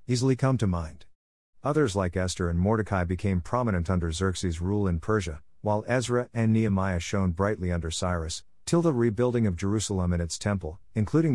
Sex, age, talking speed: male, 50-69, 175 wpm